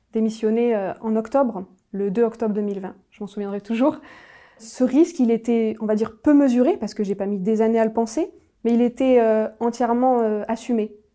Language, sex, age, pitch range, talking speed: French, female, 20-39, 210-240 Hz, 195 wpm